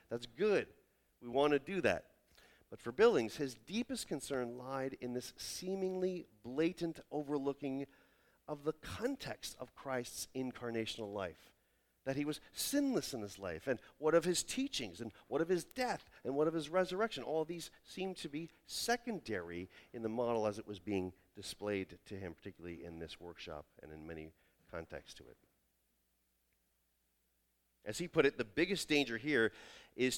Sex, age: male, 40-59